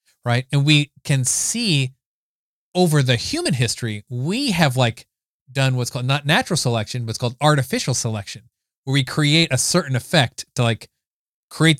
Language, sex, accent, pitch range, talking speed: English, male, American, 120-155 Hz, 165 wpm